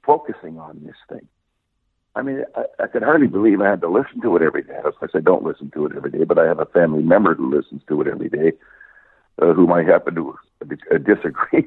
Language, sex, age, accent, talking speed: English, male, 60-79, American, 235 wpm